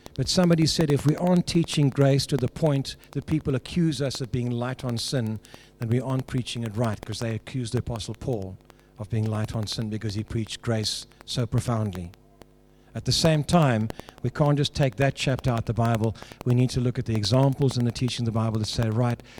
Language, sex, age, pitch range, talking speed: English, male, 50-69, 105-145 Hz, 225 wpm